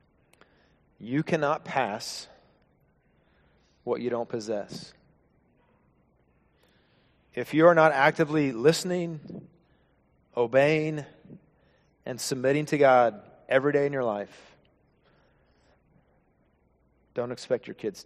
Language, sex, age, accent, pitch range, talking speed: English, male, 30-49, American, 115-150 Hz, 90 wpm